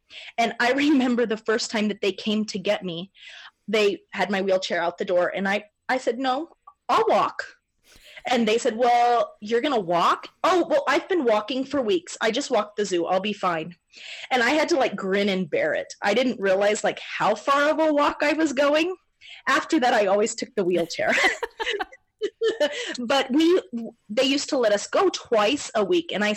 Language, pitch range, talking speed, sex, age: English, 200-265 Hz, 205 wpm, female, 30-49